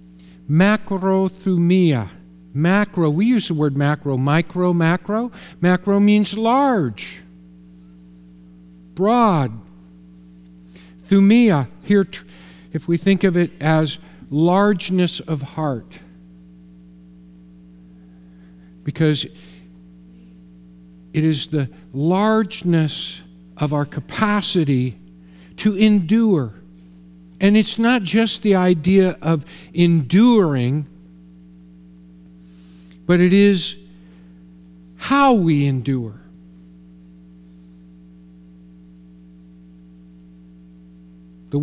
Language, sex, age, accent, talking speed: English, male, 50-69, American, 70 wpm